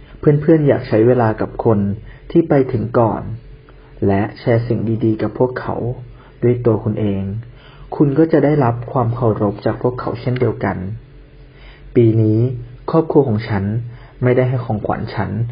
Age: 30-49